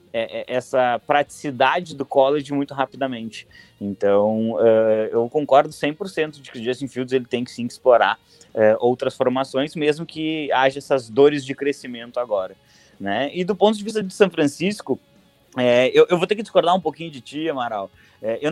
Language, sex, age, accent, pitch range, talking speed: English, male, 20-39, Brazilian, 120-150 Hz, 160 wpm